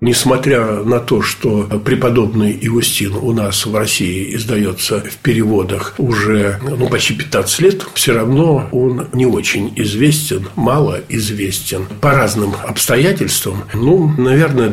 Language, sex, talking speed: Russian, male, 125 wpm